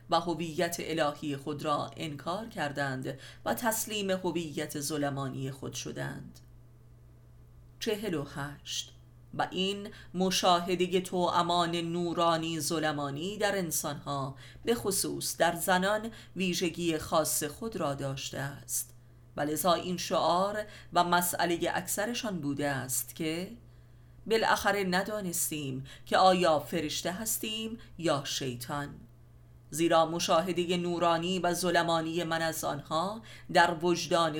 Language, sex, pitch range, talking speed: Persian, female, 140-180 Hz, 105 wpm